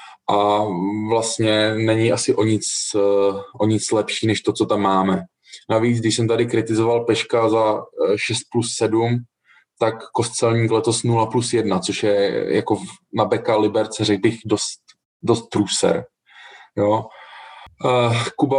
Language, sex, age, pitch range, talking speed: Czech, male, 20-39, 100-115 Hz, 140 wpm